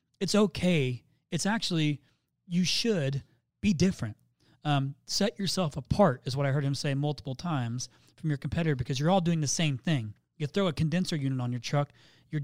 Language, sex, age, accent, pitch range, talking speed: English, male, 30-49, American, 135-165 Hz, 190 wpm